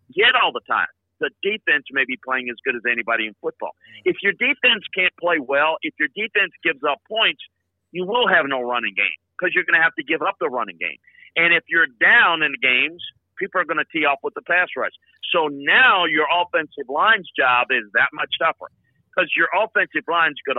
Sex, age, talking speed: male, 50-69, 220 wpm